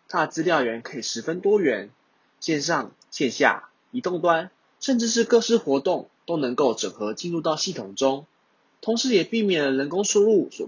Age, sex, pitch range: 20-39, male, 145-235 Hz